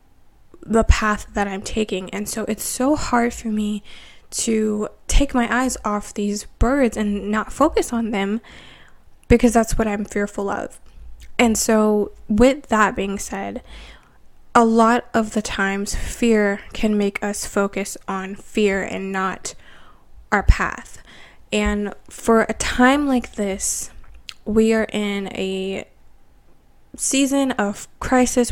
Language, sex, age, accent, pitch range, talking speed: English, female, 10-29, American, 205-235 Hz, 135 wpm